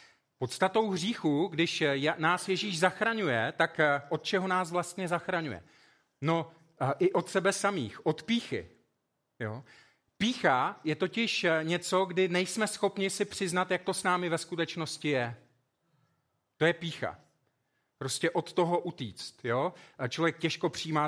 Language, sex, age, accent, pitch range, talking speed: Czech, male, 40-59, native, 155-185 Hz, 130 wpm